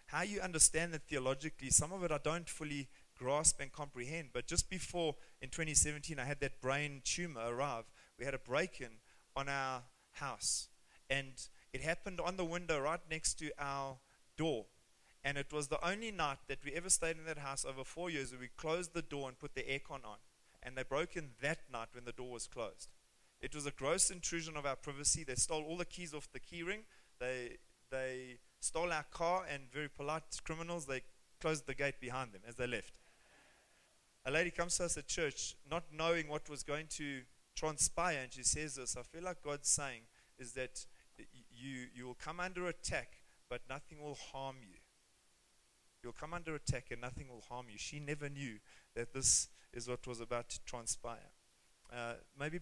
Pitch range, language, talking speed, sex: 130-160 Hz, English, 195 wpm, male